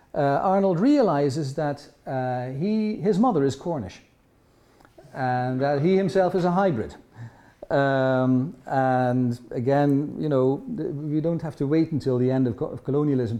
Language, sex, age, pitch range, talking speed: English, male, 50-69, 115-150 Hz, 155 wpm